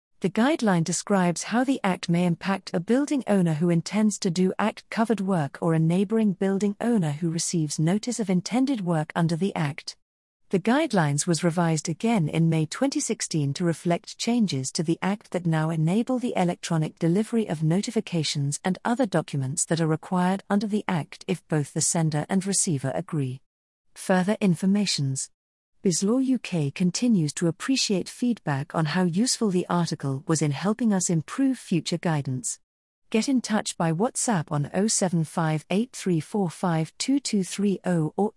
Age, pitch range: 40-59, 160-210 Hz